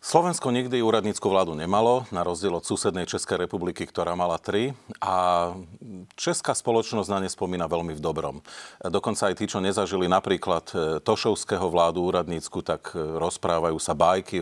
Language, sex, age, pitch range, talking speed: Slovak, male, 40-59, 85-105 Hz, 150 wpm